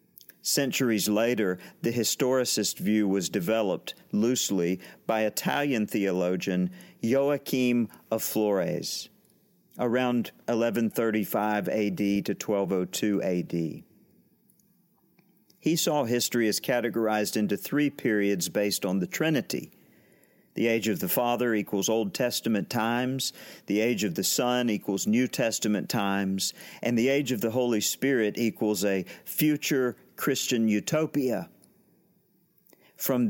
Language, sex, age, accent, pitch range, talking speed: English, male, 50-69, American, 105-130 Hz, 115 wpm